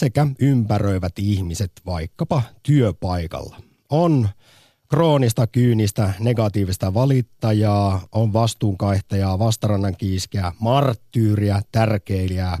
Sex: male